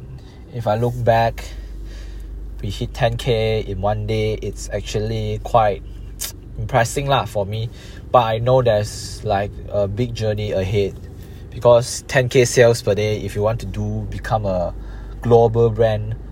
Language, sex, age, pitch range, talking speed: English, male, 20-39, 100-120 Hz, 145 wpm